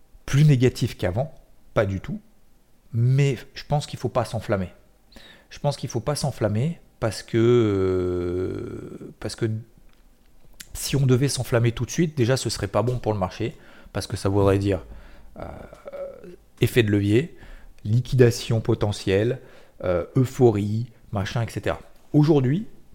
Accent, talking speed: French, 150 wpm